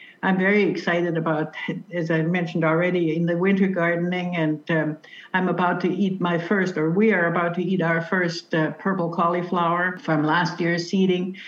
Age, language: 60-79, English